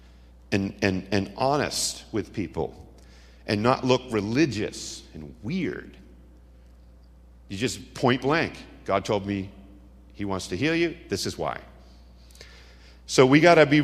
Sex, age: male, 50-69